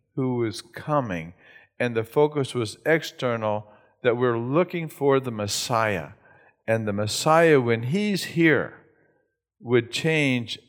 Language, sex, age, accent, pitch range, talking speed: English, male, 50-69, American, 110-145 Hz, 125 wpm